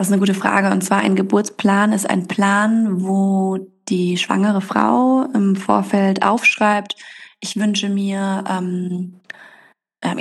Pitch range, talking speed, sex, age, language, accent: 195-215 Hz, 135 wpm, female, 20-39, German, German